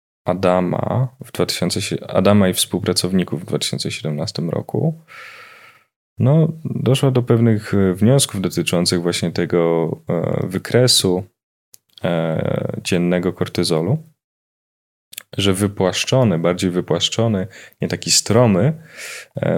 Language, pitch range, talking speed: Polish, 90-110 Hz, 90 wpm